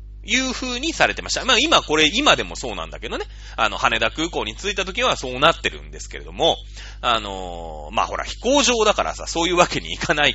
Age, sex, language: 30-49, male, Japanese